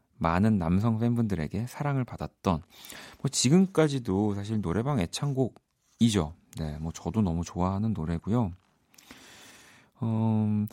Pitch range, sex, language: 90-125 Hz, male, Korean